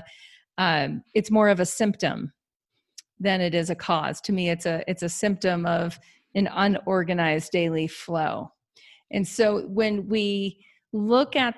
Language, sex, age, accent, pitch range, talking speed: English, female, 40-59, American, 175-220 Hz, 150 wpm